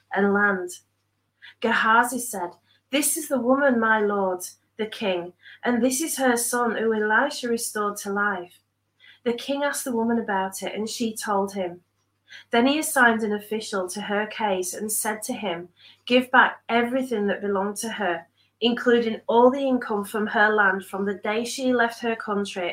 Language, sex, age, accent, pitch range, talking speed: English, female, 30-49, British, 185-235 Hz, 175 wpm